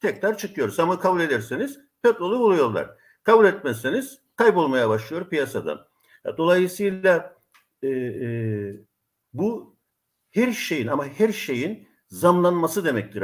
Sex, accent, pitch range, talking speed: male, native, 135-210 Hz, 105 wpm